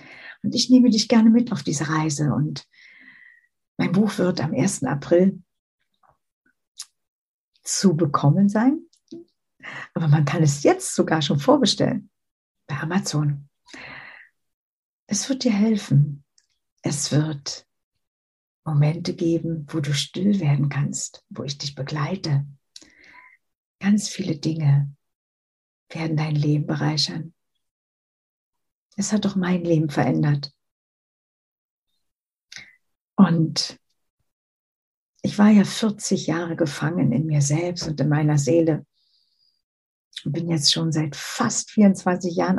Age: 60-79